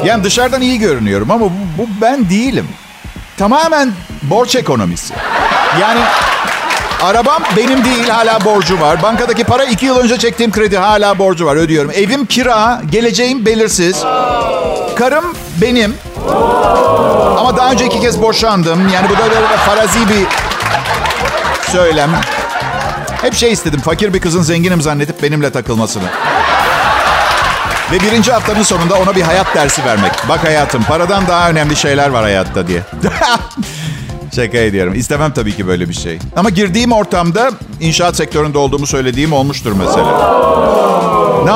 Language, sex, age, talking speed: Turkish, male, 50-69, 135 wpm